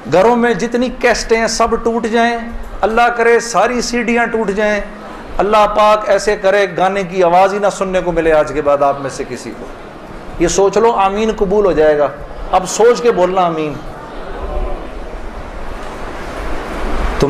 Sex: male